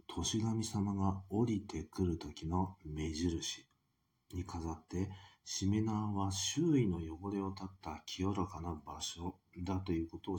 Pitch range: 85-100 Hz